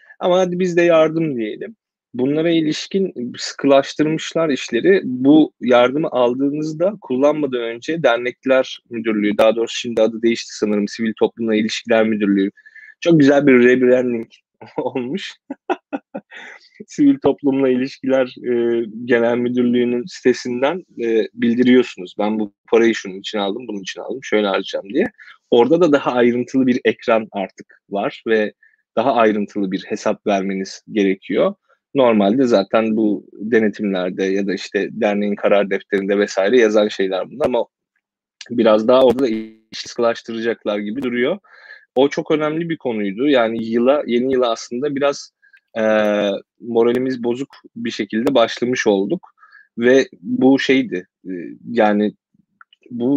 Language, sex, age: Turkish, male, 30-49